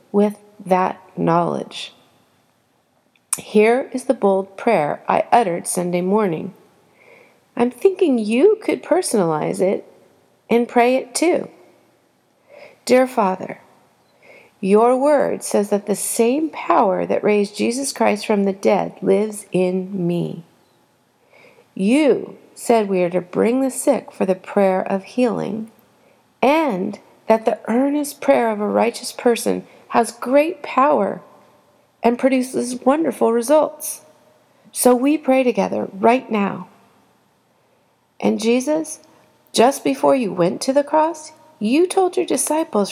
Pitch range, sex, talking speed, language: 195-270 Hz, female, 125 wpm, English